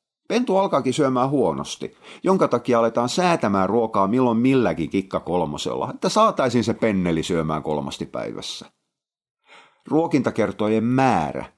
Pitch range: 95-140 Hz